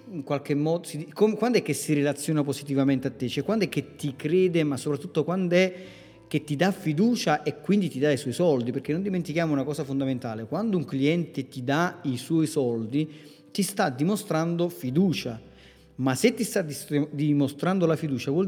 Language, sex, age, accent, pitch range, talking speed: Italian, male, 40-59, native, 135-175 Hz, 190 wpm